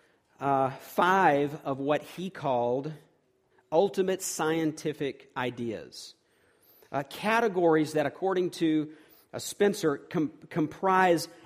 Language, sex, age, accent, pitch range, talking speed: English, male, 50-69, American, 135-175 Hz, 90 wpm